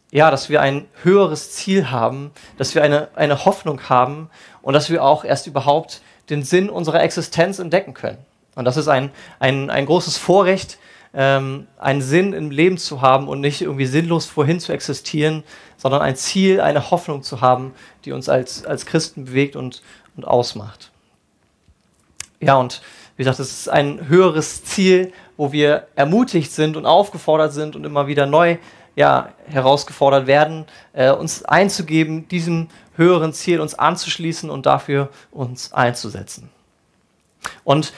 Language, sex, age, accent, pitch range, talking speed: German, male, 30-49, German, 140-175 Hz, 155 wpm